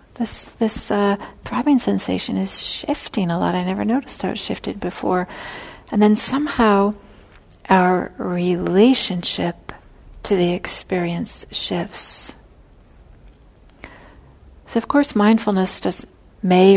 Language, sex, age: English, female, 50-69